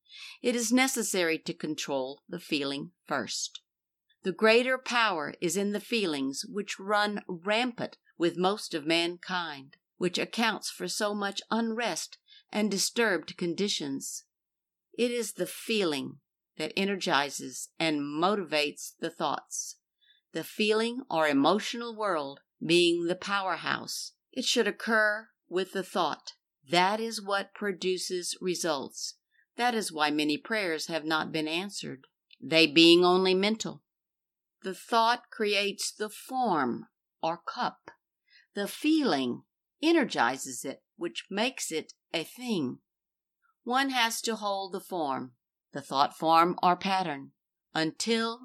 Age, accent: 50-69, American